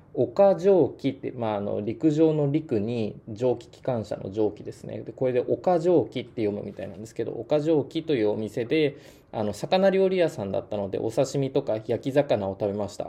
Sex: male